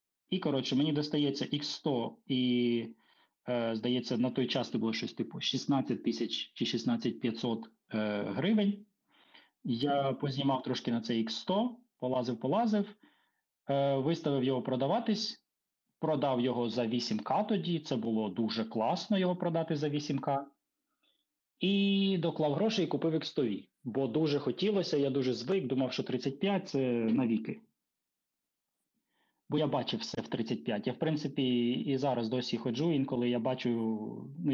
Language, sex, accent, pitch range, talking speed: Ukrainian, male, native, 120-160 Hz, 135 wpm